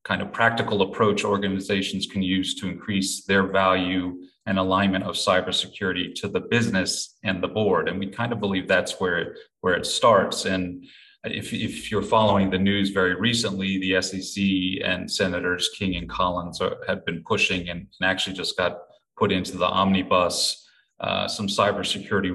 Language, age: English, 30-49